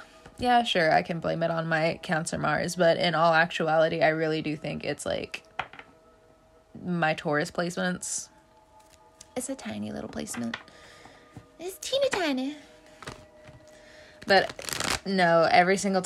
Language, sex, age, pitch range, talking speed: English, female, 20-39, 165-205 Hz, 130 wpm